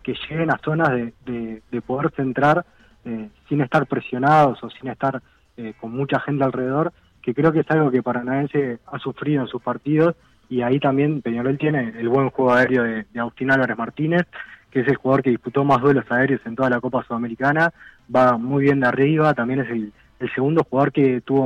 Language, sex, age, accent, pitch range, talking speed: Spanish, male, 20-39, Argentinian, 120-140 Hz, 205 wpm